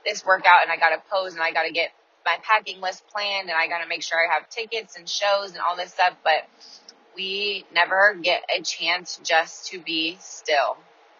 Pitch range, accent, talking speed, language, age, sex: 165-205 Hz, American, 220 wpm, English, 20-39, female